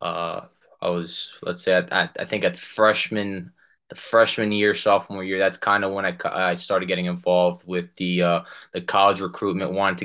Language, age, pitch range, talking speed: English, 20-39, 90-100 Hz, 195 wpm